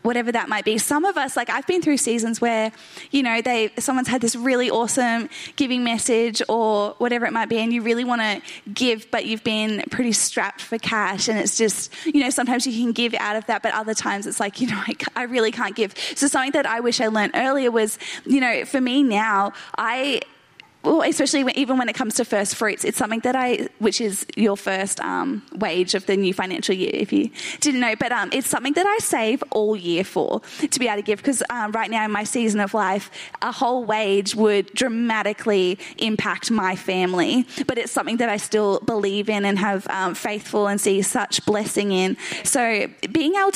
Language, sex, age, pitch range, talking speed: English, female, 10-29, 205-250 Hz, 220 wpm